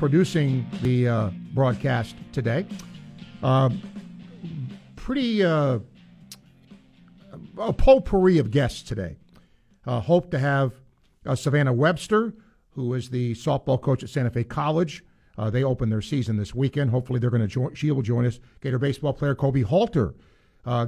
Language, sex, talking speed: English, male, 145 wpm